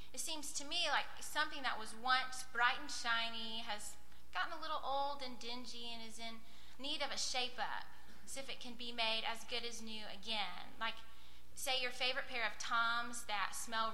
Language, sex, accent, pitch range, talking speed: English, female, American, 210-255 Hz, 200 wpm